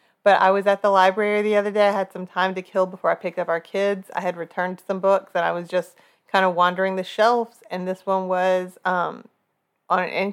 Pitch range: 185-220 Hz